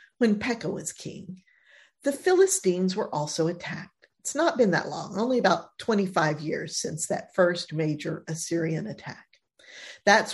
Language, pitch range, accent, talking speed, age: English, 170-235 Hz, American, 145 wpm, 50-69